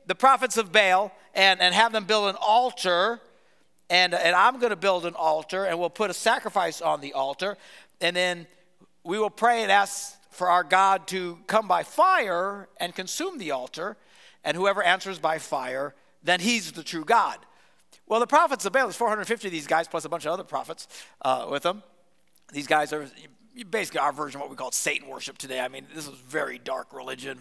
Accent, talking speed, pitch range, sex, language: American, 205 wpm, 155-220 Hz, male, English